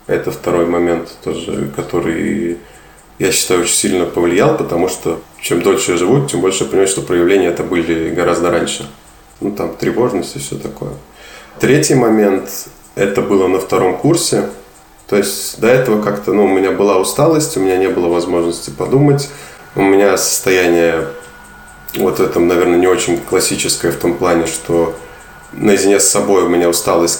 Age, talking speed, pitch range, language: 20-39, 165 wpm, 85-100 Hz, Russian